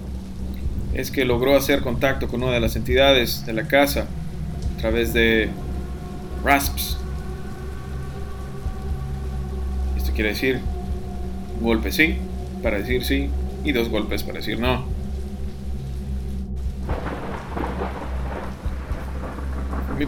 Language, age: Spanish, 30-49